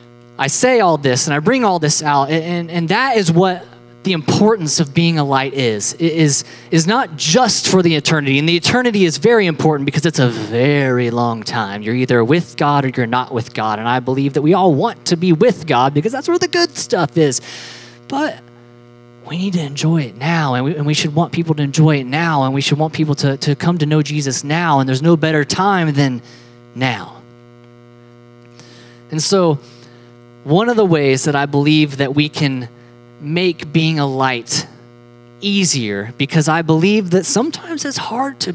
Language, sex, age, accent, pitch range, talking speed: English, male, 20-39, American, 120-170 Hz, 200 wpm